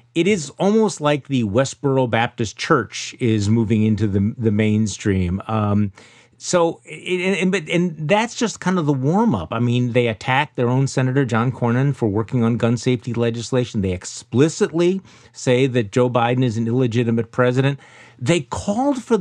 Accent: American